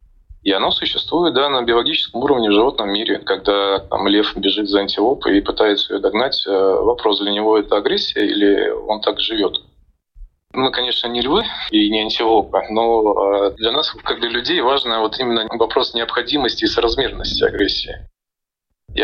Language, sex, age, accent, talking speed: Russian, male, 20-39, native, 160 wpm